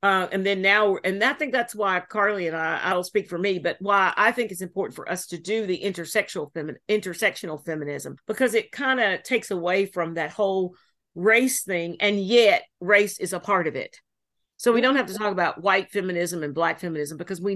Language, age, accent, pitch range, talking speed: English, 50-69, American, 165-200 Hz, 215 wpm